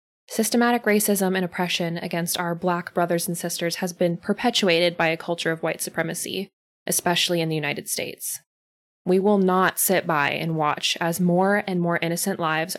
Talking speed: 175 wpm